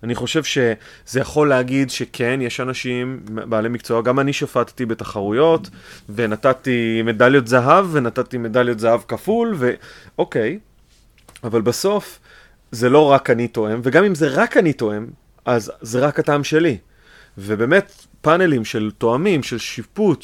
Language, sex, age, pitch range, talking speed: Hebrew, male, 30-49, 120-160 Hz, 135 wpm